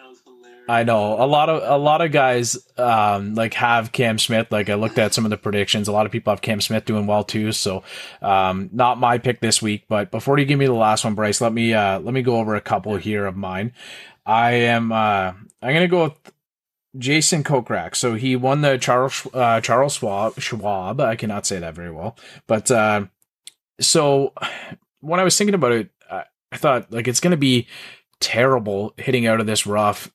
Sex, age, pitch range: male, 30-49, 105-125 Hz